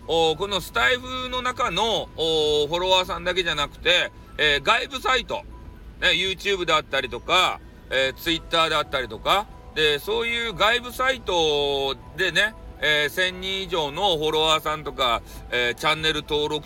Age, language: 40-59, Japanese